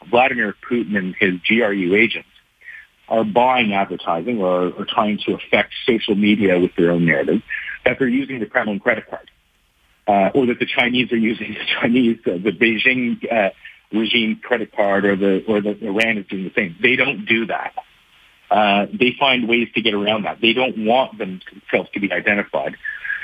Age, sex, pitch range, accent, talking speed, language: 50-69, male, 100-125 Hz, American, 185 wpm, English